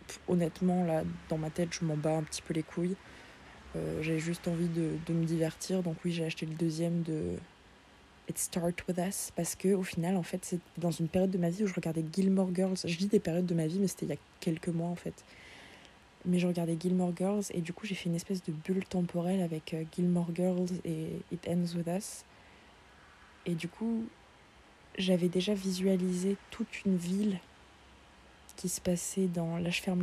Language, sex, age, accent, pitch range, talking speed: French, female, 20-39, French, 160-185 Hz, 210 wpm